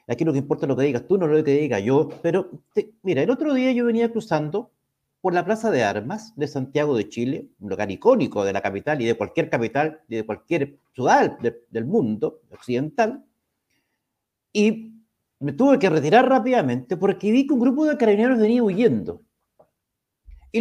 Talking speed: 190 wpm